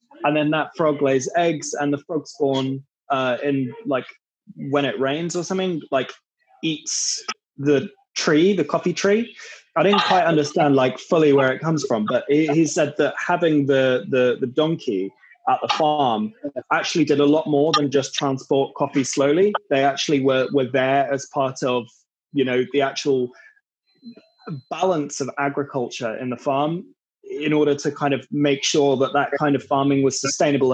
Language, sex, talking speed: English, male, 175 wpm